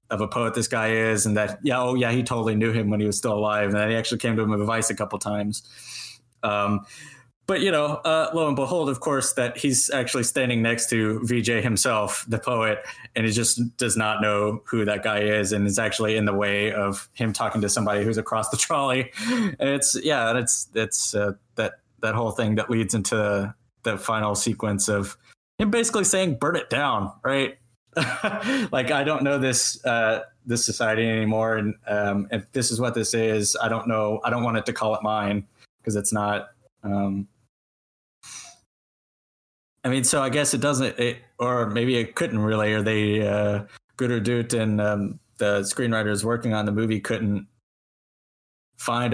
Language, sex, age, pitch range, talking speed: English, male, 20-39, 105-120 Hz, 200 wpm